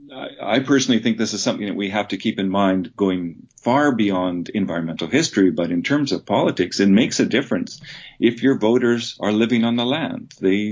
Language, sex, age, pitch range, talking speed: English, male, 50-69, 90-115 Hz, 200 wpm